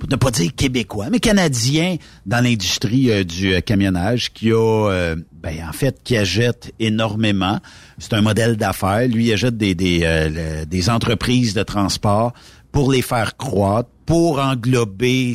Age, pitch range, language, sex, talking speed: 60-79, 90-120 Hz, French, male, 160 wpm